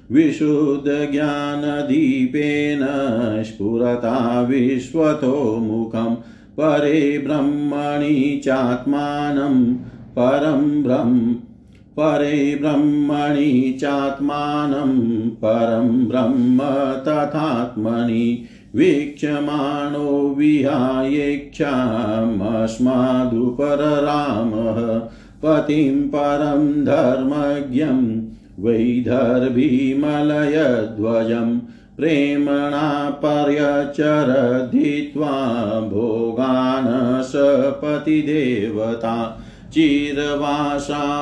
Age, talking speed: 50-69, 40 wpm